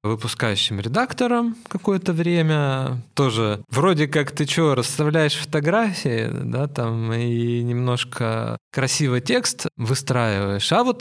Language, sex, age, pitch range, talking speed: Russian, male, 20-39, 120-155 Hz, 110 wpm